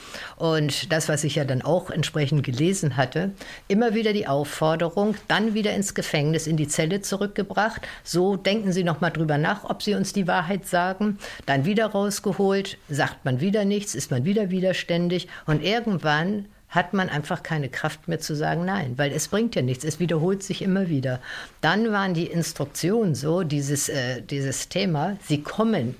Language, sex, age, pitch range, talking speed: German, female, 60-79, 145-195 Hz, 180 wpm